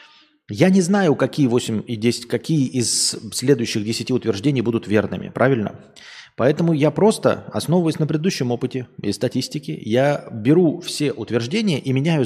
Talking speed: 145 wpm